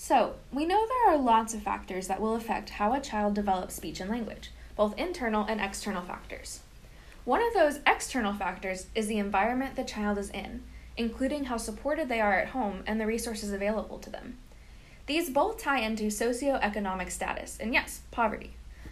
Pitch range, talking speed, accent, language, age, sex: 195-255 Hz, 180 wpm, American, English, 10-29, female